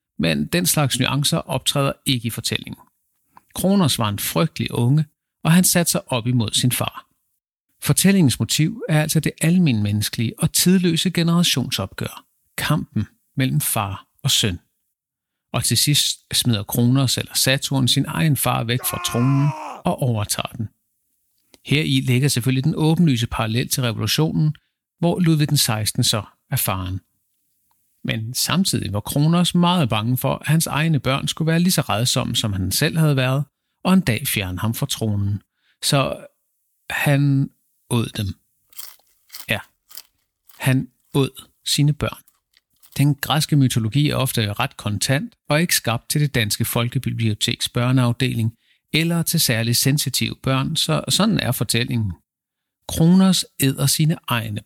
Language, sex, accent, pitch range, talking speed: Danish, male, native, 115-155 Hz, 145 wpm